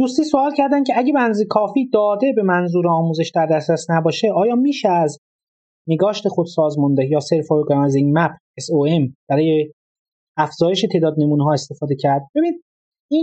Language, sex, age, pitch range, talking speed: Persian, male, 30-49, 145-215 Hz, 160 wpm